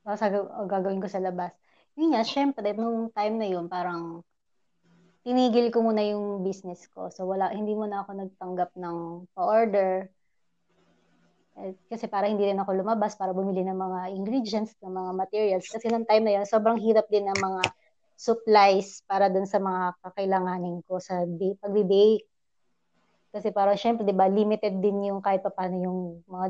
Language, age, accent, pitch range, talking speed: Filipino, 20-39, native, 185-220 Hz, 175 wpm